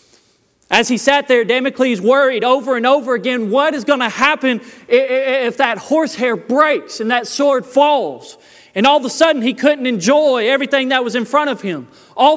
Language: English